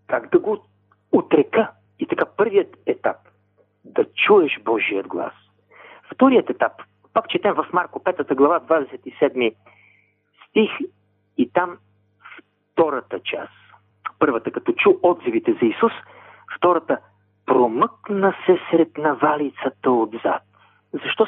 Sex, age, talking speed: male, 50-69, 110 wpm